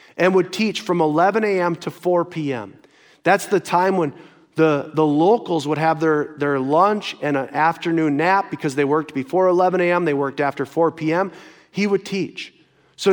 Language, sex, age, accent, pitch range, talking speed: English, male, 40-59, American, 160-205 Hz, 185 wpm